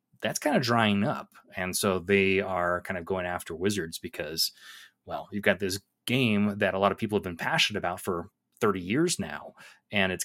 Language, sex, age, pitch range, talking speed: English, male, 30-49, 95-110 Hz, 205 wpm